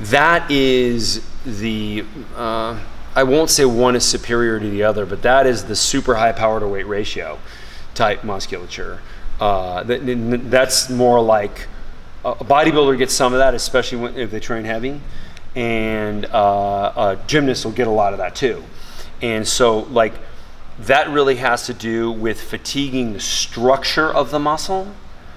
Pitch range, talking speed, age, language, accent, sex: 105-130 Hz, 160 wpm, 30-49, English, American, male